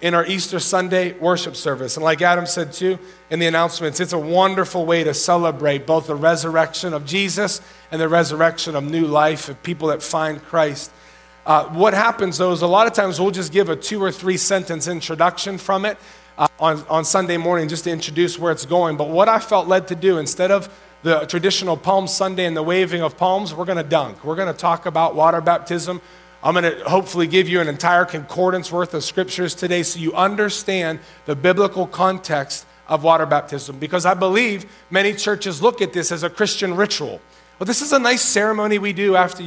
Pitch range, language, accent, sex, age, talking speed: 160-195 Hz, English, American, male, 40-59, 210 wpm